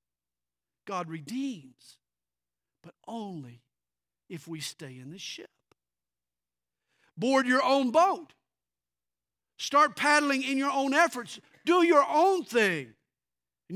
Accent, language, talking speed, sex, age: American, English, 110 wpm, male, 50-69